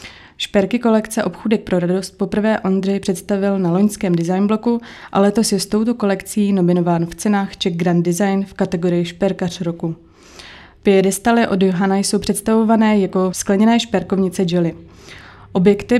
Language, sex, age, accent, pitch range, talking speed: Czech, female, 20-39, native, 180-210 Hz, 145 wpm